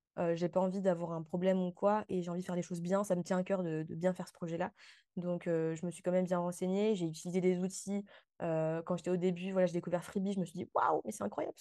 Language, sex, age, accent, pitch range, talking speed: French, female, 20-39, French, 175-195 Hz, 300 wpm